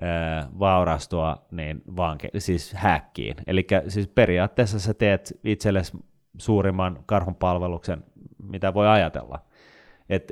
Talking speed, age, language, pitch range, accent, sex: 105 wpm, 30-49, Finnish, 85-100 Hz, native, male